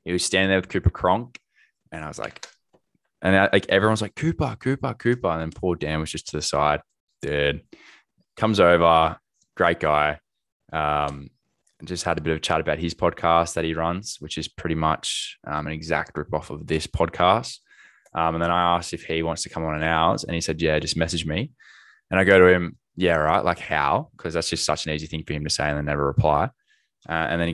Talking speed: 230 wpm